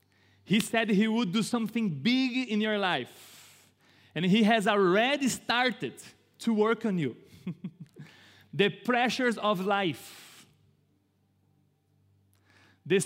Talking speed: 110 wpm